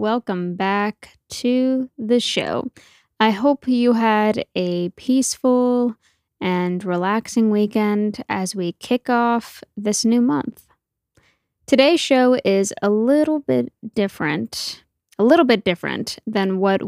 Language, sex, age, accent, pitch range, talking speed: English, female, 10-29, American, 180-245 Hz, 120 wpm